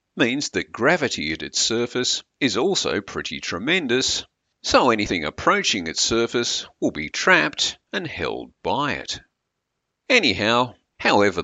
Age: 50-69